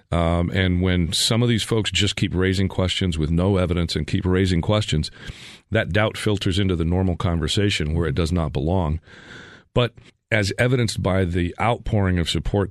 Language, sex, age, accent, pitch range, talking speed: English, male, 40-59, American, 85-105 Hz, 180 wpm